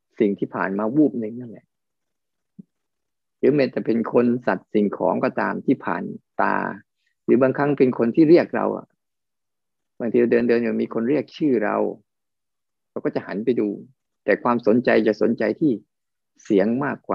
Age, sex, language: 20-39, male, Thai